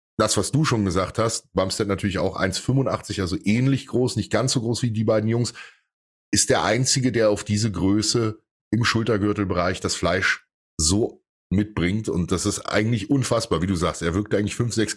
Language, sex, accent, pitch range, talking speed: English, male, German, 95-115 Hz, 190 wpm